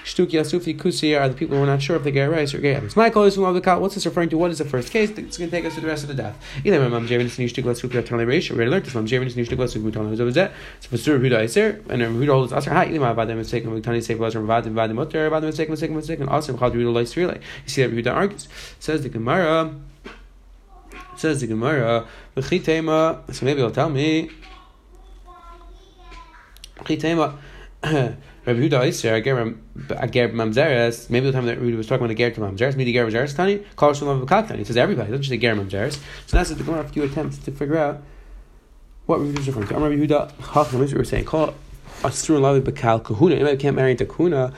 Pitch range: 120-160 Hz